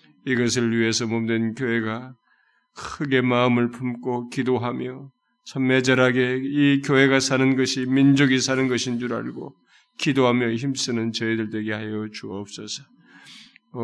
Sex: male